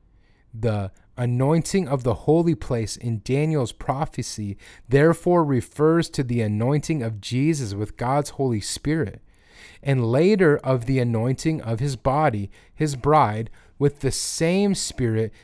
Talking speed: 130 wpm